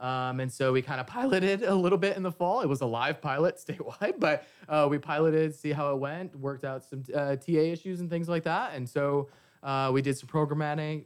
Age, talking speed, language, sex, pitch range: 20-39, 240 wpm, English, male, 125-150 Hz